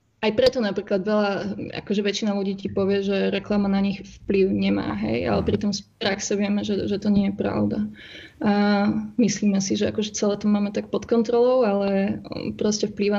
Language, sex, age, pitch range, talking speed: Slovak, female, 20-39, 200-220 Hz, 185 wpm